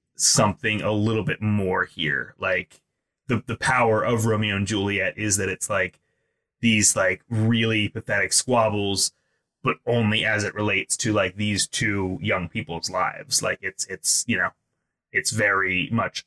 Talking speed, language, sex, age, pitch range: 160 wpm, English, male, 20-39, 100-125 Hz